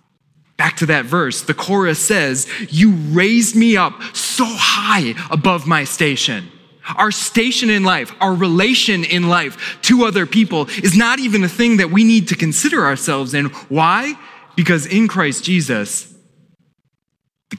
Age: 20-39